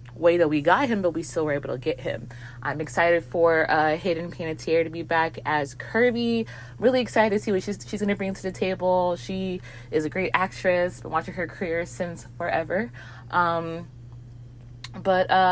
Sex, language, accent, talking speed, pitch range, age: female, English, American, 190 wpm, 155-190 Hz, 20-39